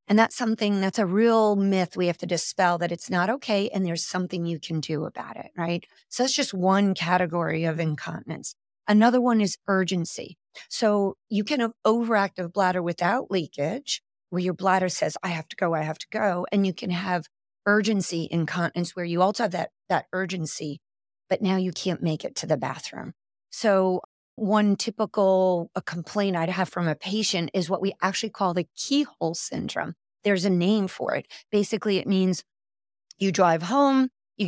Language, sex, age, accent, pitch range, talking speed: English, female, 40-59, American, 175-210 Hz, 185 wpm